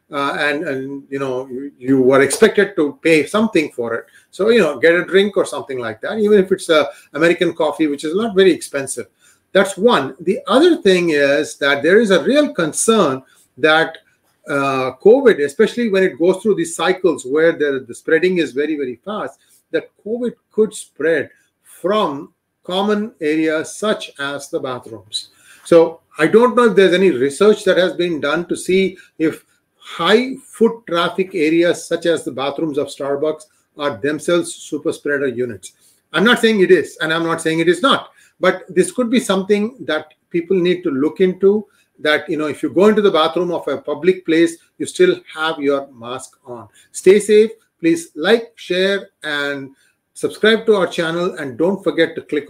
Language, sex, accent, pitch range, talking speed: English, male, Indian, 145-195 Hz, 185 wpm